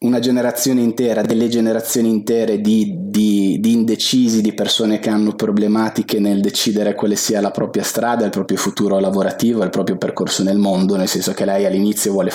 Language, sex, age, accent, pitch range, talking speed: Italian, male, 20-39, native, 105-120 Hz, 180 wpm